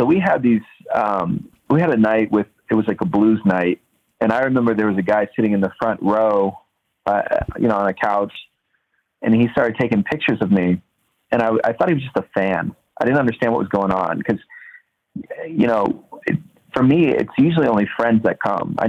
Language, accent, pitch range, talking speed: English, American, 100-115 Hz, 220 wpm